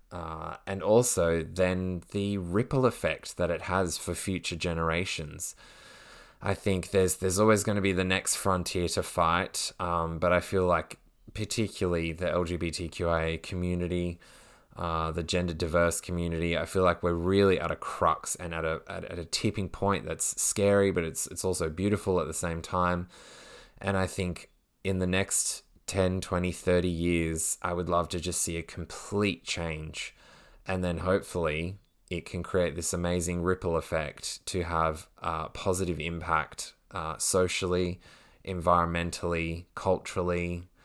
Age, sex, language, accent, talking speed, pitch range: 20-39, male, English, Australian, 155 wpm, 85-95 Hz